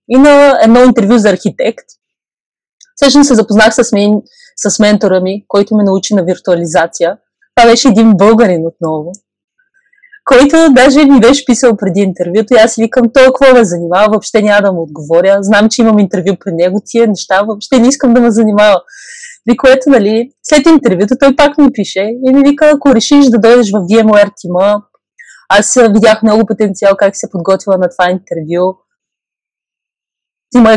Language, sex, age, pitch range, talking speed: Bulgarian, female, 20-39, 195-245 Hz, 170 wpm